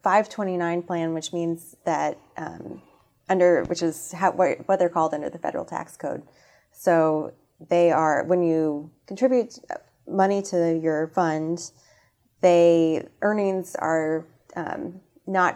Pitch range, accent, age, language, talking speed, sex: 155-180 Hz, American, 20-39, English, 125 wpm, female